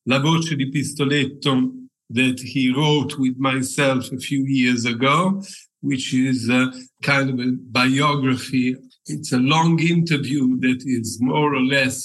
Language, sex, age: Italian, male, 50-69